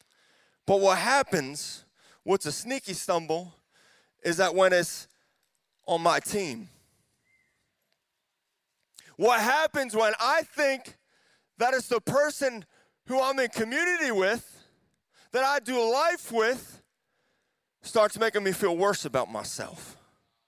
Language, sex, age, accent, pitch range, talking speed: English, male, 30-49, American, 190-295 Hz, 115 wpm